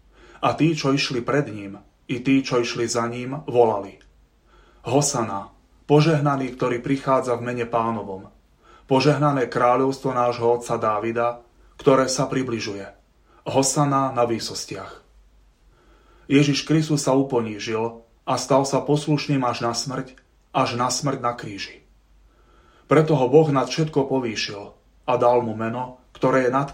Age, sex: 30-49, male